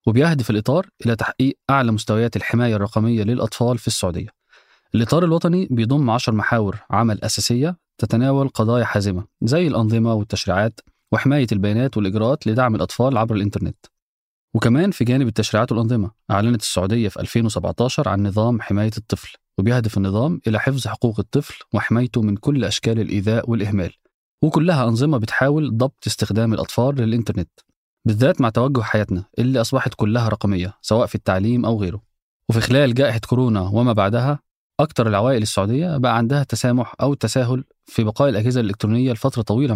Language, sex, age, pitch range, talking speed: Arabic, male, 30-49, 105-130 Hz, 145 wpm